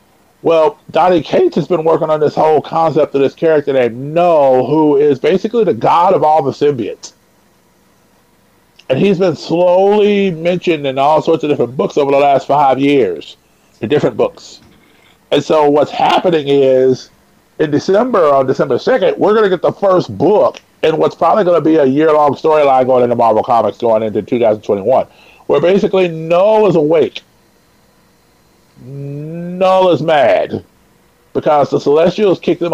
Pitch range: 135-190 Hz